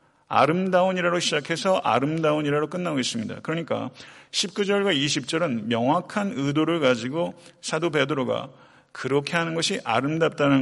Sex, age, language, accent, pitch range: male, 40-59, Korean, native, 130-175 Hz